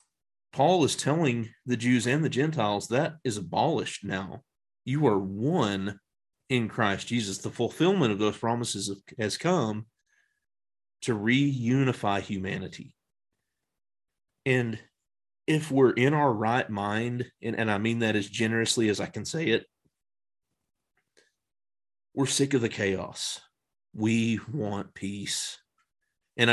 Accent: American